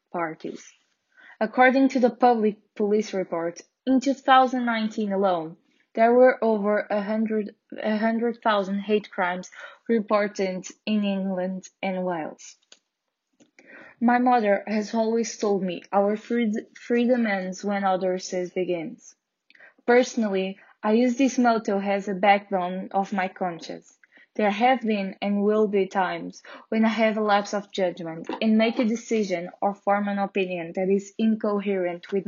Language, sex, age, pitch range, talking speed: Portuguese, female, 10-29, 190-230 Hz, 135 wpm